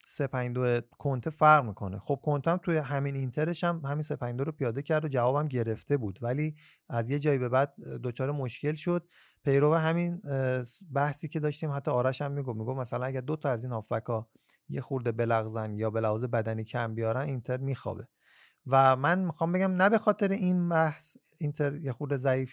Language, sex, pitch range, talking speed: Persian, male, 120-155 Hz, 185 wpm